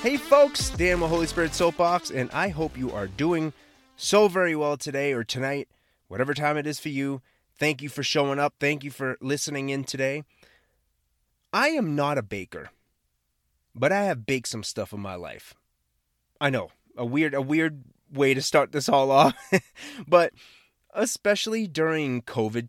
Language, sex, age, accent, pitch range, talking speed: English, male, 30-49, American, 115-160 Hz, 175 wpm